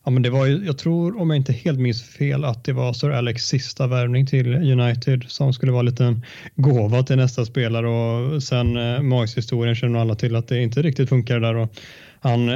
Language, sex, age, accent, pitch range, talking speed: Swedish, male, 20-39, native, 115-135 Hz, 225 wpm